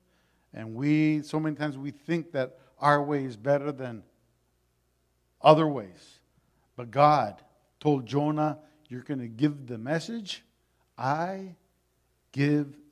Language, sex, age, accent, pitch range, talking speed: English, male, 50-69, American, 125-185 Hz, 125 wpm